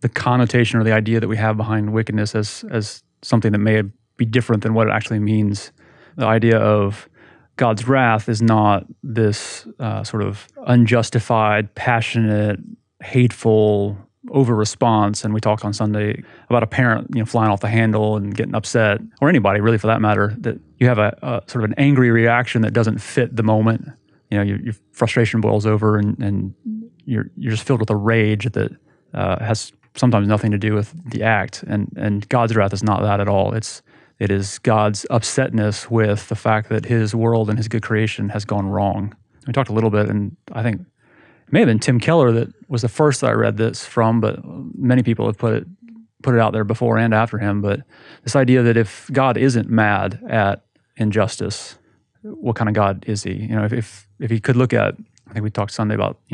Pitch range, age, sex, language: 105-120 Hz, 30-49, male, English